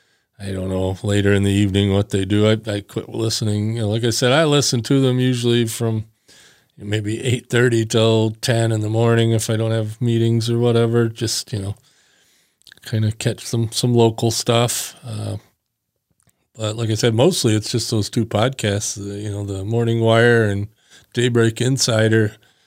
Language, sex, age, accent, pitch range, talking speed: English, male, 40-59, American, 110-125 Hz, 185 wpm